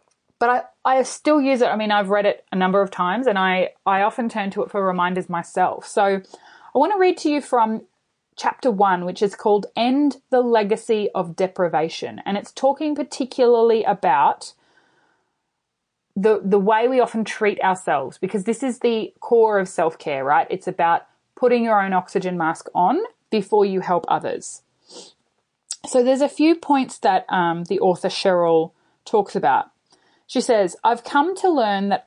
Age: 30-49